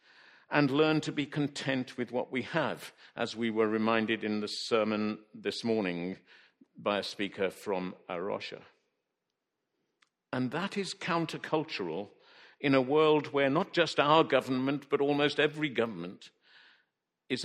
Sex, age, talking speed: male, 50-69, 140 wpm